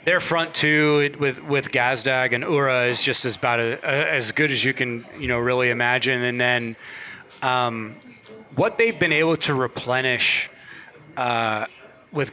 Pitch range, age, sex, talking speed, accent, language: 125-145 Hz, 30-49, male, 165 wpm, American, English